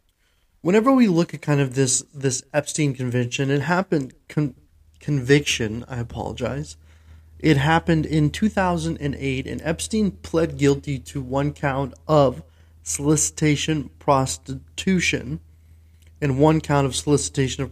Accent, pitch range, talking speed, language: American, 120-150 Hz, 120 wpm, English